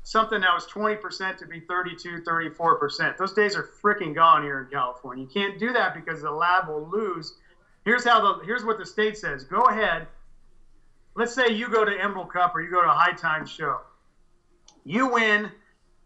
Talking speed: 185 wpm